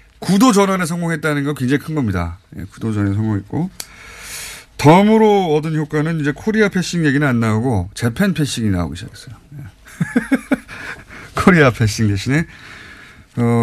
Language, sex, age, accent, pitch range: Korean, male, 30-49, native, 115-170 Hz